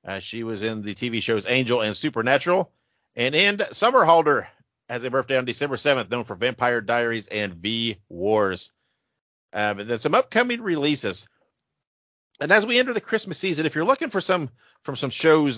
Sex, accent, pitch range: male, American, 110-155 Hz